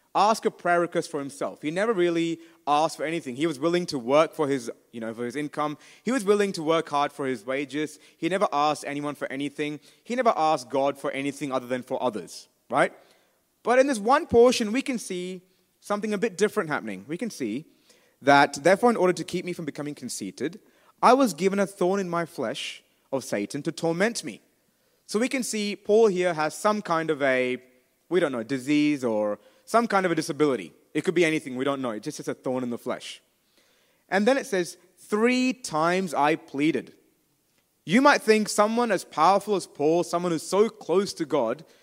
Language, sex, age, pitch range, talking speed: Malayalam, male, 30-49, 145-200 Hz, 210 wpm